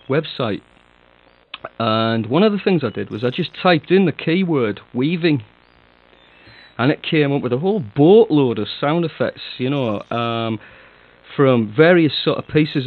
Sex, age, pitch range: male, 40-59, 115-165 Hz